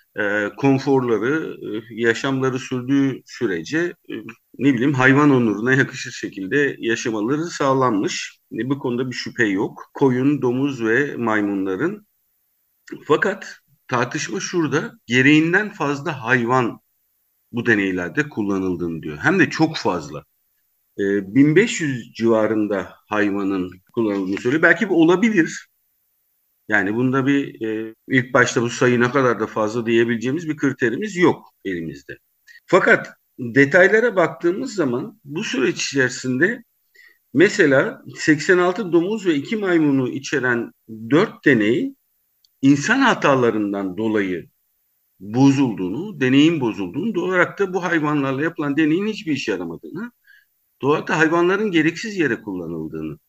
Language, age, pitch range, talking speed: Turkish, 50-69, 110-165 Hz, 115 wpm